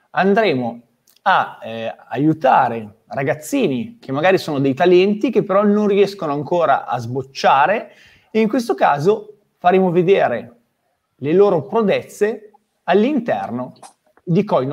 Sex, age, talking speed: male, 30-49, 120 wpm